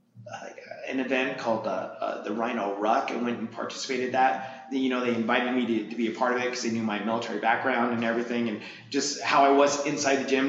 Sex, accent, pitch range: male, American, 120-140 Hz